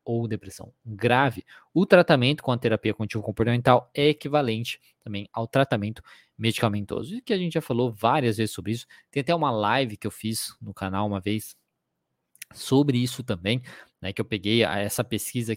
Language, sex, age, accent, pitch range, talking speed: Portuguese, male, 20-39, Brazilian, 105-140 Hz, 175 wpm